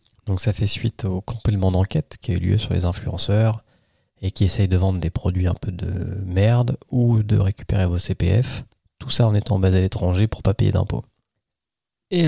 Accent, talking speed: French, 205 wpm